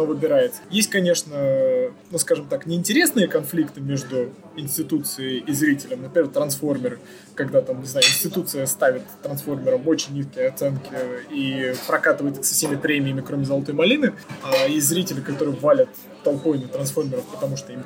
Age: 20-39